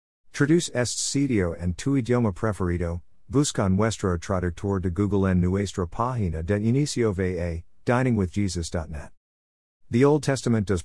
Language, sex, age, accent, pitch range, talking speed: English, male, 50-69, American, 90-115 Hz, 125 wpm